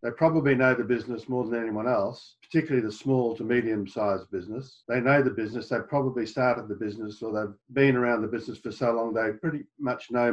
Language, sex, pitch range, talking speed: English, male, 125-150 Hz, 215 wpm